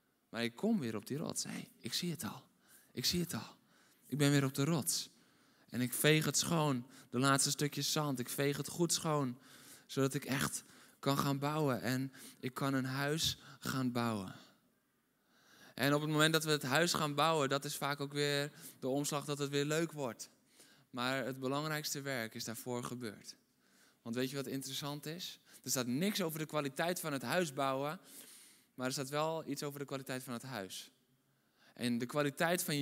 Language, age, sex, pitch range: Dutch, 20-39, male, 135-165 Hz